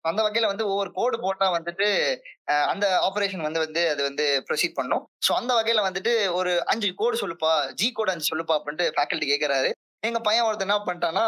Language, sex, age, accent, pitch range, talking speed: Tamil, male, 20-39, native, 180-245 Hz, 180 wpm